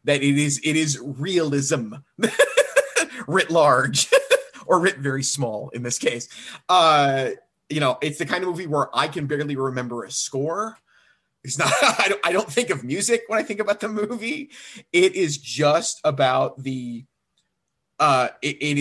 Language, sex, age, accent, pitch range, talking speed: English, male, 30-49, American, 135-155 Hz, 155 wpm